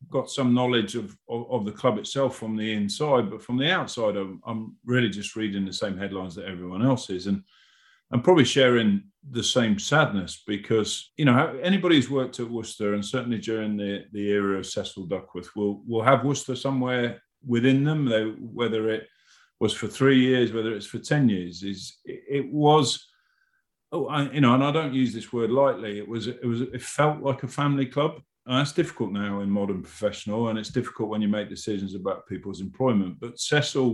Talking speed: 200 wpm